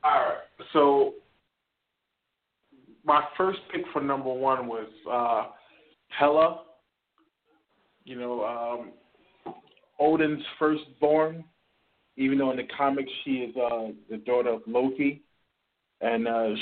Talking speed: 110 wpm